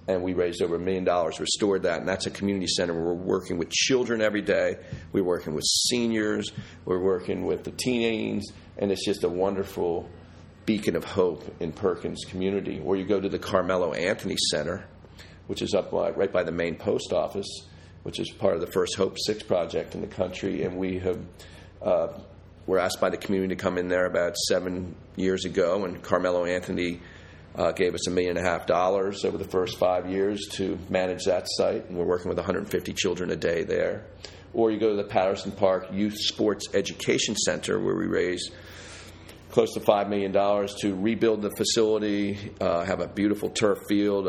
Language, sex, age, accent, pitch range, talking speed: English, male, 40-59, American, 90-100 Hz, 200 wpm